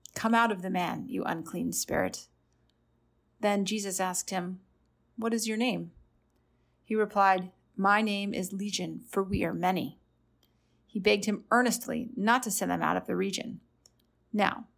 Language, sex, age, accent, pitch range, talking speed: English, female, 30-49, American, 195-235 Hz, 160 wpm